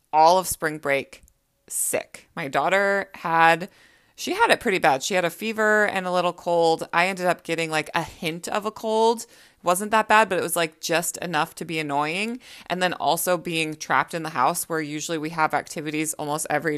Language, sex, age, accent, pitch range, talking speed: English, female, 20-39, American, 165-215 Hz, 210 wpm